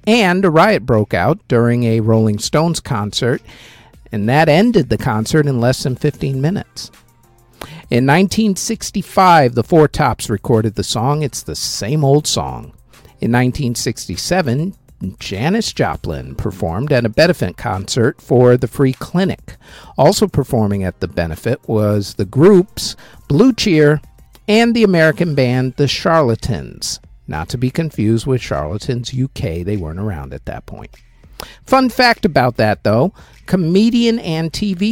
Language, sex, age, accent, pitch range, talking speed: English, male, 50-69, American, 110-160 Hz, 145 wpm